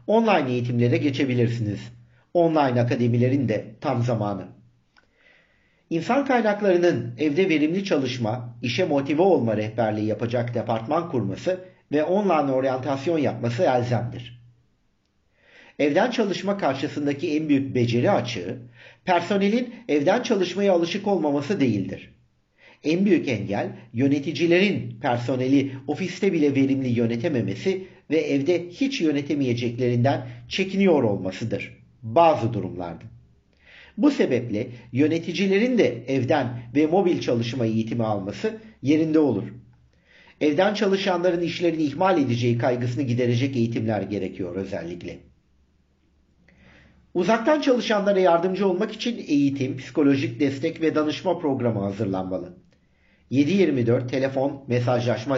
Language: Turkish